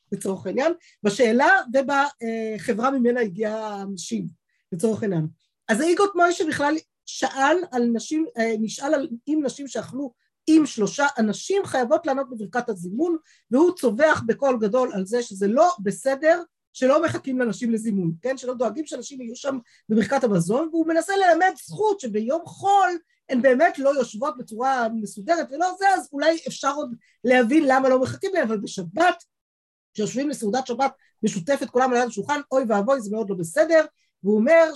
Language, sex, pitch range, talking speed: Hebrew, female, 215-295 Hz, 155 wpm